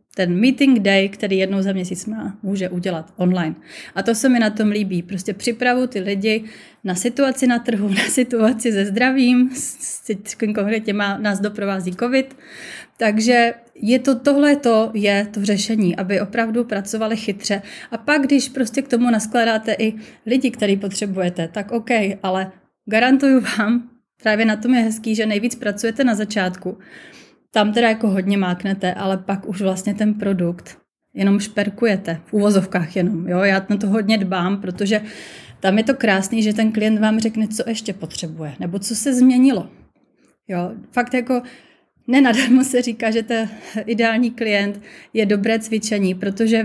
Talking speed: 165 wpm